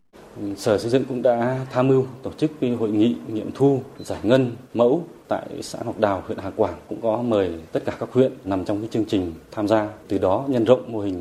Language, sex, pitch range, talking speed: Vietnamese, male, 110-145 Hz, 235 wpm